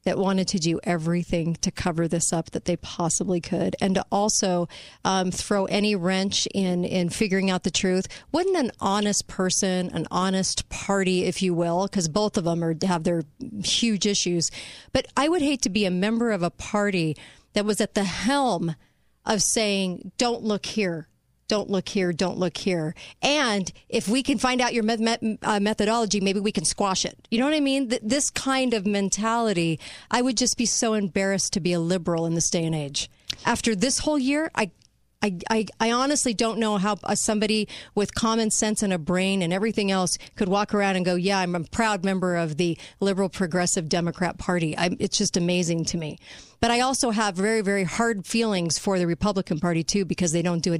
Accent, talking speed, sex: American, 210 wpm, female